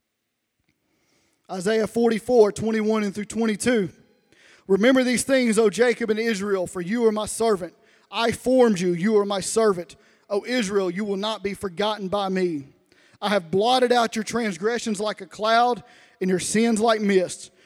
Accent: American